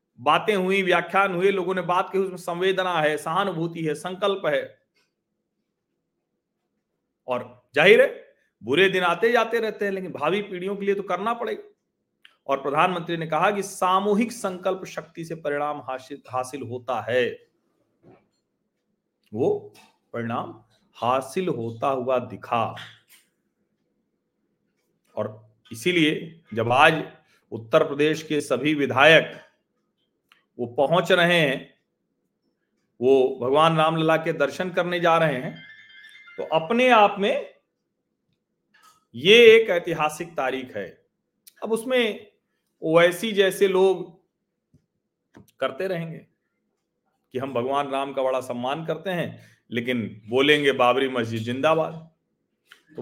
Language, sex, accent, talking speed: Hindi, male, native, 120 wpm